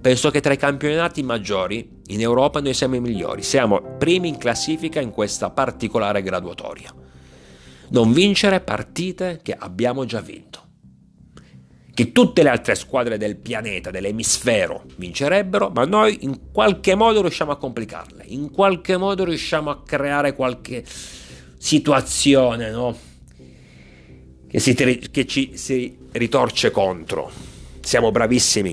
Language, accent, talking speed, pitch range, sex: Italian, native, 130 wpm, 95-145 Hz, male